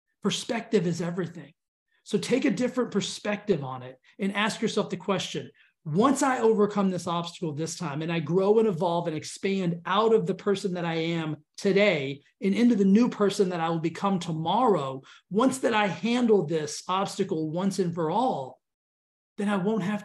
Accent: American